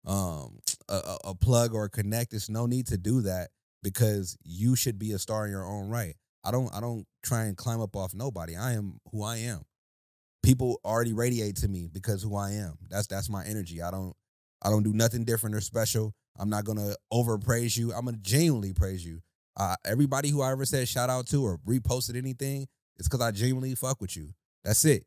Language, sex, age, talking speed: English, male, 30-49, 225 wpm